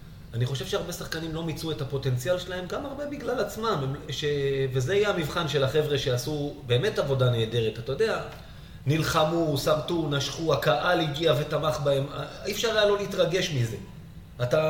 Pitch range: 130-155 Hz